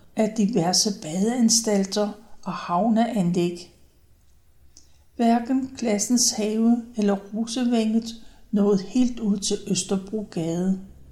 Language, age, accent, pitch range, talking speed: Danish, 60-79, native, 185-230 Hz, 80 wpm